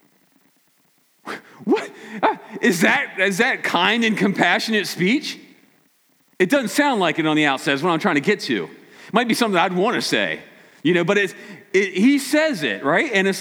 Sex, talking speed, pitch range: male, 195 wpm, 160-220 Hz